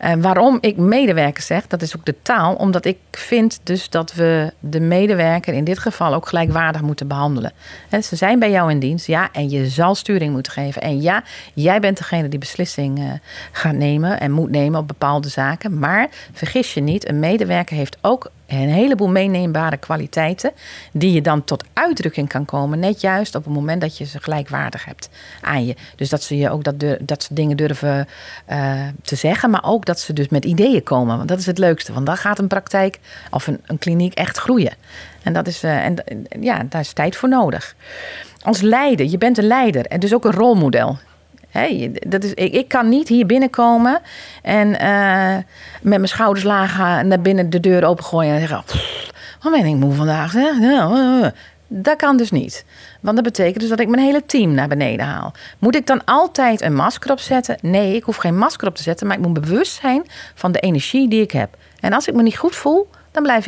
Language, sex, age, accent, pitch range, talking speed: Dutch, female, 40-59, Dutch, 150-225 Hz, 205 wpm